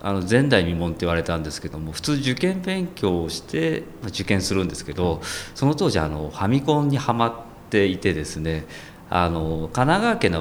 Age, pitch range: 40-59, 80-125 Hz